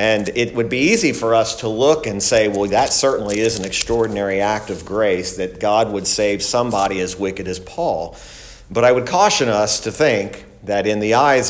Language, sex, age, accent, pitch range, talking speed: English, male, 50-69, American, 100-120 Hz, 210 wpm